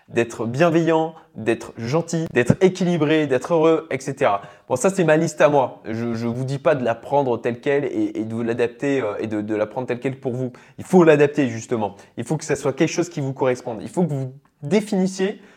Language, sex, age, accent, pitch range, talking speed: French, male, 20-39, French, 120-165 Hz, 225 wpm